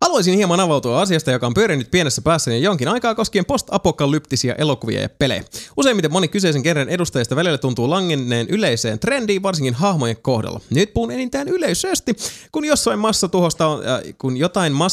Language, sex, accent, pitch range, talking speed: Finnish, male, native, 125-180 Hz, 150 wpm